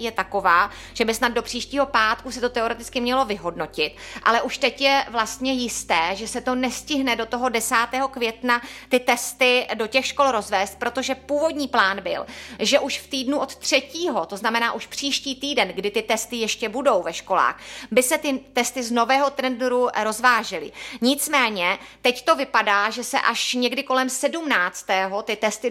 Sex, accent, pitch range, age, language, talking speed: female, native, 215-255 Hz, 30-49, Czech, 175 wpm